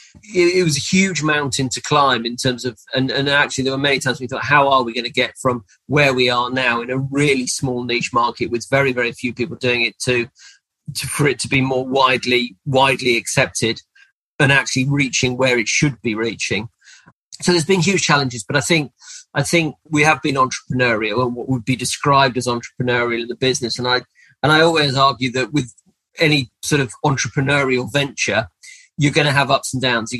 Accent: British